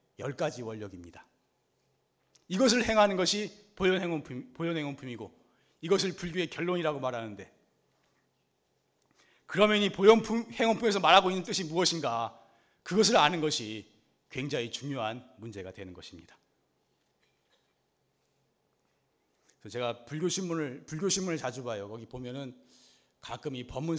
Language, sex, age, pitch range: Korean, male, 40-59, 115-180 Hz